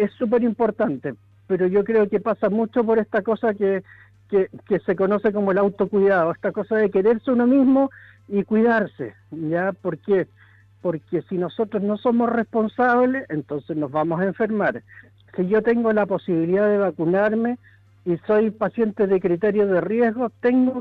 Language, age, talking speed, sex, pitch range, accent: Spanish, 60-79, 165 wpm, male, 180-235 Hz, Argentinian